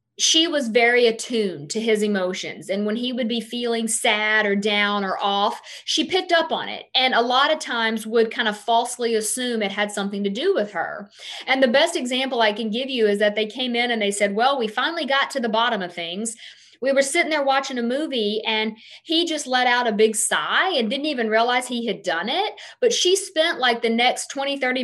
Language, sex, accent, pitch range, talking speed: English, female, American, 220-285 Hz, 230 wpm